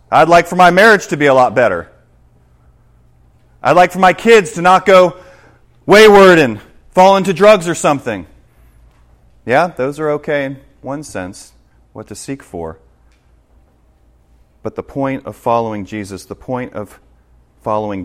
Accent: American